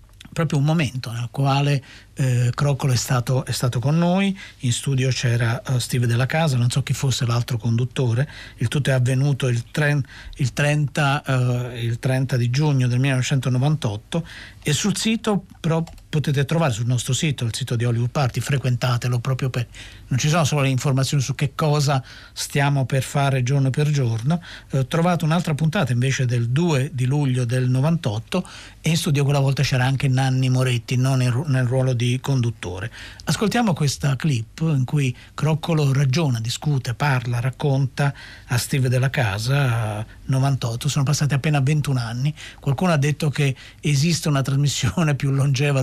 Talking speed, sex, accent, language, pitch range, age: 170 wpm, male, native, Italian, 125-145 Hz, 50-69